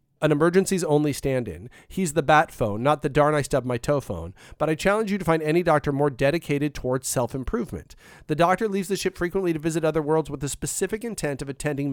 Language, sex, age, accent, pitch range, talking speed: English, male, 40-59, American, 135-170 Hz, 220 wpm